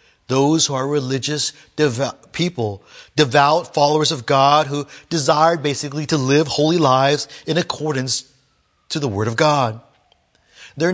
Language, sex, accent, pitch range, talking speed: English, male, American, 130-160 Hz, 135 wpm